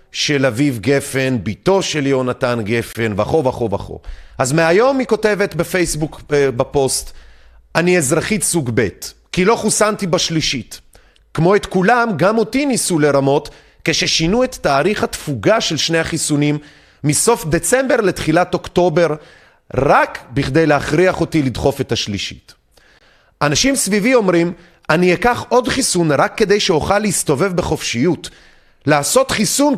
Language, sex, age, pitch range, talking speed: Hebrew, male, 30-49, 130-190 Hz, 125 wpm